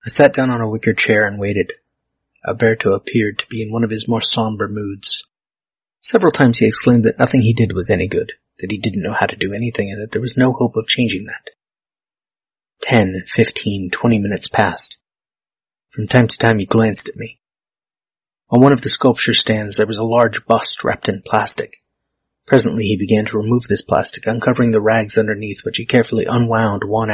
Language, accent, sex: English, American, male